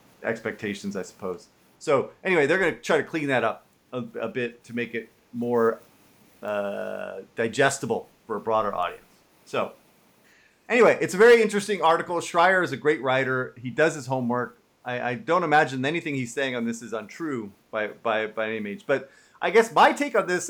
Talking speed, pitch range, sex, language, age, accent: 190 wpm, 125-190 Hz, male, English, 40-59, American